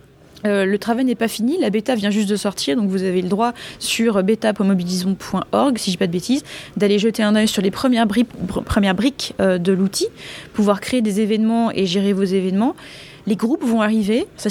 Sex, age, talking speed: female, 20-39, 215 wpm